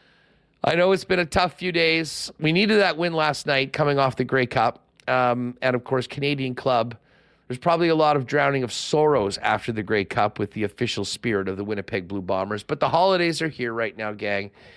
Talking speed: 220 wpm